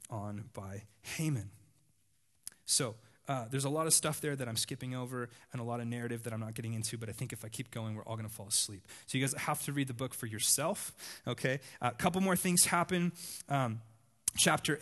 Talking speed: 225 wpm